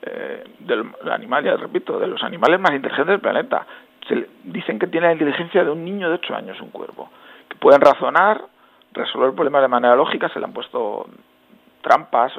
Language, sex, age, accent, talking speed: Spanish, male, 40-59, Spanish, 195 wpm